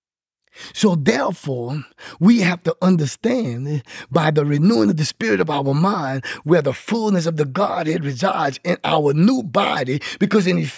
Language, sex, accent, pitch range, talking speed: English, male, American, 170-250 Hz, 150 wpm